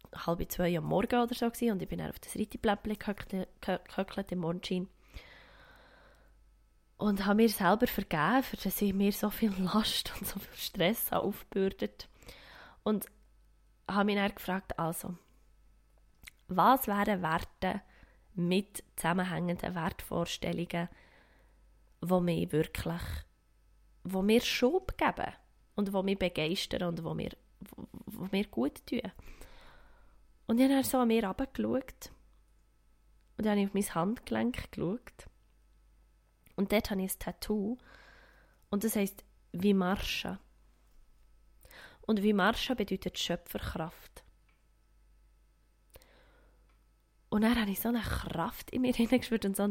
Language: German